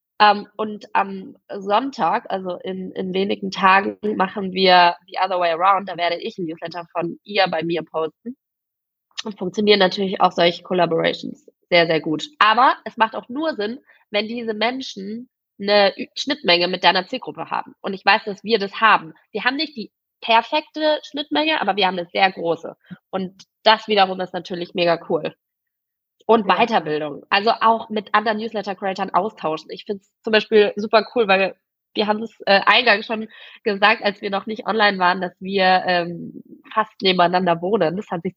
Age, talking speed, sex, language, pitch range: 20-39, 175 wpm, female, German, 180-220 Hz